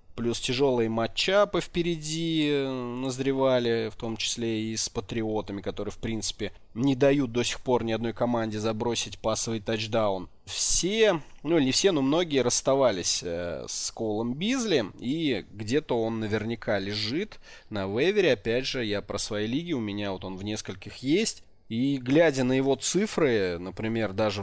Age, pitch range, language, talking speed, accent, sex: 20-39, 105-130 Hz, Russian, 150 wpm, native, male